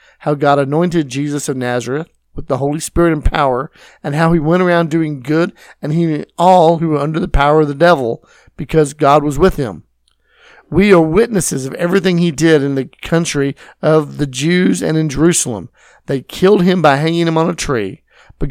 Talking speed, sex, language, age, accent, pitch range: 200 wpm, male, English, 50-69, American, 135-175 Hz